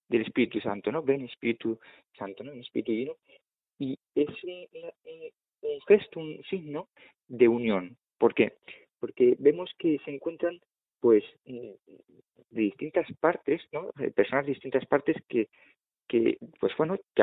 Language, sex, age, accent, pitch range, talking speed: Spanish, male, 40-59, Spanish, 125-190 Hz, 140 wpm